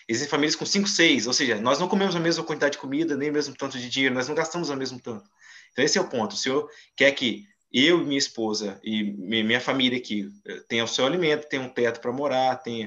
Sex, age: male, 20-39